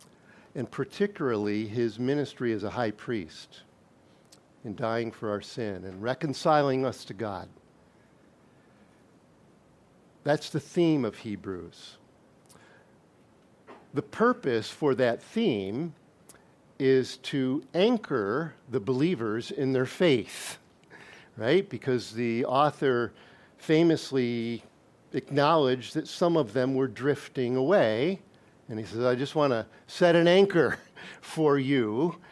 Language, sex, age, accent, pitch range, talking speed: English, male, 50-69, American, 120-165 Hz, 115 wpm